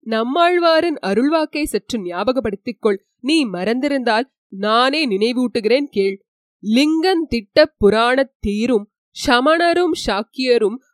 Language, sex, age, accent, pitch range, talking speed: Tamil, female, 20-39, native, 220-290 Hz, 80 wpm